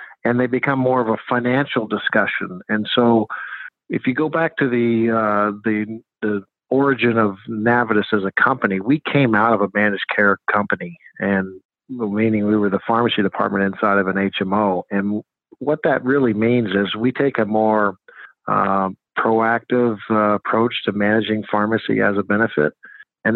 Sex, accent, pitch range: male, American, 105-125 Hz